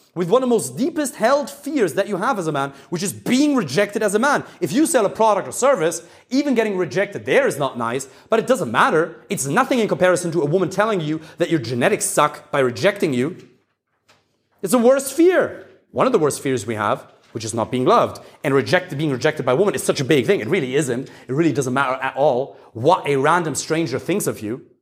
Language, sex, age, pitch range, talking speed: English, male, 30-49, 170-260 Hz, 240 wpm